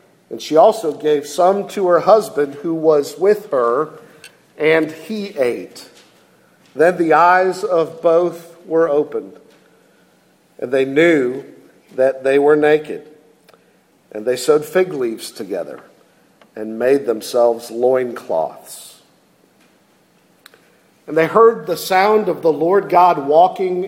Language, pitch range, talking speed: English, 145-195 Hz, 125 wpm